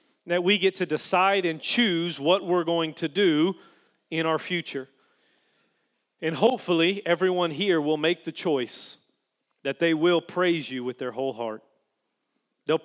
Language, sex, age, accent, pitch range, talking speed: English, male, 40-59, American, 150-175 Hz, 155 wpm